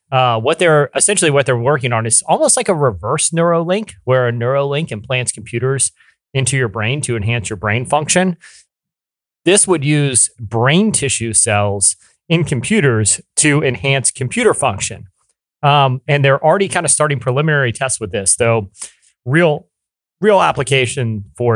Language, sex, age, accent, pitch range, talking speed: English, male, 30-49, American, 115-150 Hz, 155 wpm